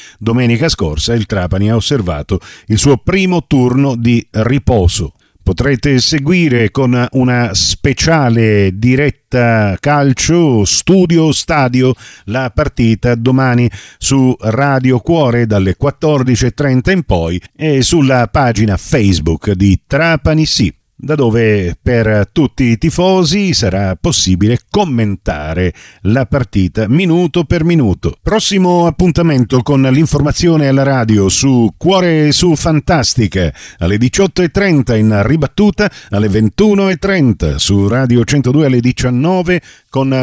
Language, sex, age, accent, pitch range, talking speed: Italian, male, 50-69, native, 110-155 Hz, 110 wpm